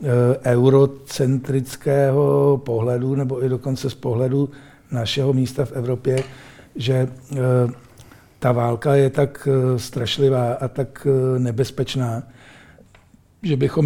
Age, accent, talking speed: 60-79, native, 95 wpm